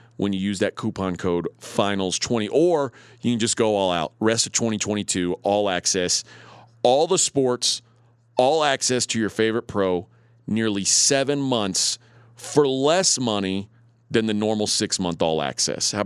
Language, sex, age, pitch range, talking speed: English, male, 40-59, 105-130 Hz, 155 wpm